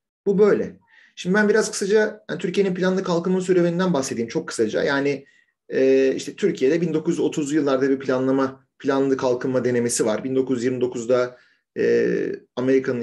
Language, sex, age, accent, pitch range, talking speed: Turkish, male, 40-59, native, 125-165 Hz, 120 wpm